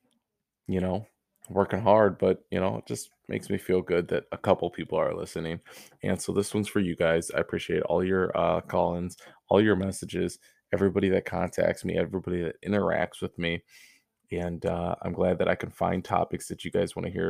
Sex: male